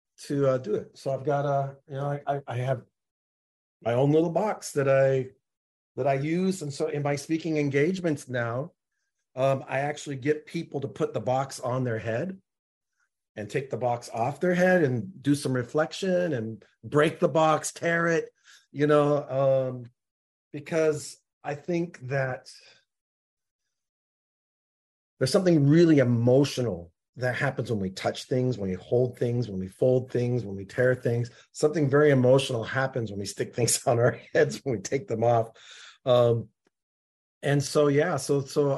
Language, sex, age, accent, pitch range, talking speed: English, male, 40-59, American, 120-150 Hz, 170 wpm